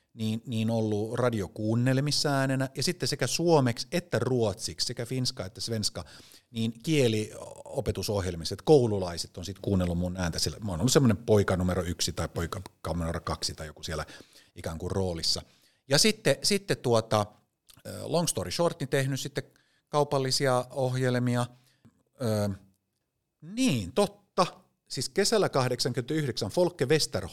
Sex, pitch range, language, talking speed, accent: male, 95-140 Hz, Finnish, 125 wpm, native